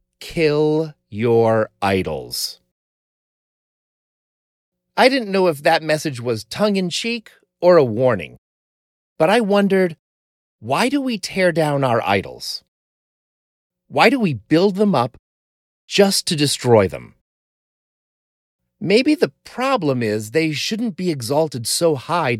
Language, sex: English, male